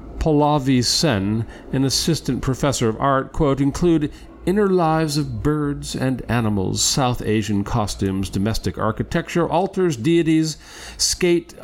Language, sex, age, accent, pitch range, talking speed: English, male, 50-69, American, 100-150 Hz, 120 wpm